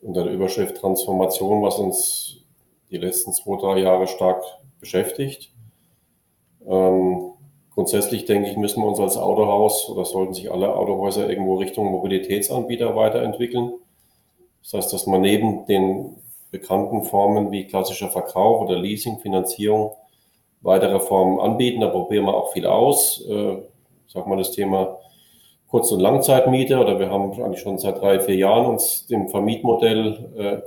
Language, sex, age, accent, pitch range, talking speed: German, male, 40-59, German, 95-110 Hz, 145 wpm